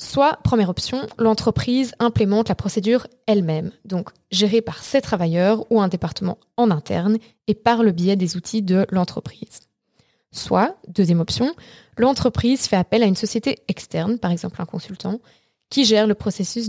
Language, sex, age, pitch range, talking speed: French, female, 20-39, 180-230 Hz, 160 wpm